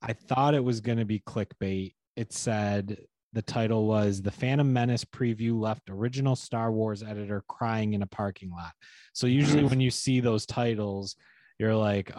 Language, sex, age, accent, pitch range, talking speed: English, male, 30-49, American, 100-115 Hz, 175 wpm